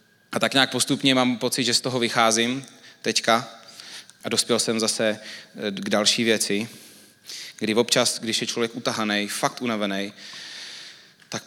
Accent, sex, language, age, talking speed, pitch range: native, male, Czech, 20-39, 140 wpm, 105-125 Hz